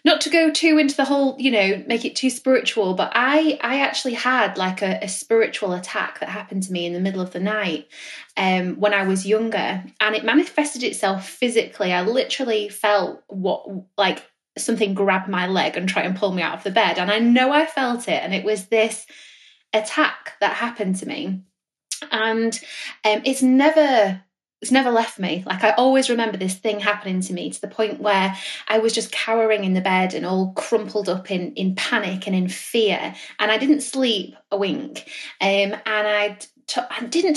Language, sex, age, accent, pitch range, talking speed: English, female, 10-29, British, 195-245 Hz, 200 wpm